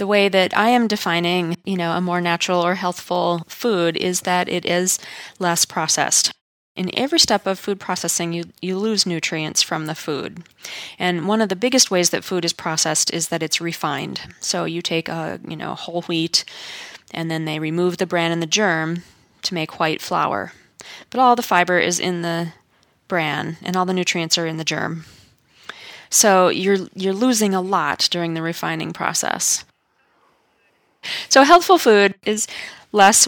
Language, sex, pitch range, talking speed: English, female, 170-210 Hz, 180 wpm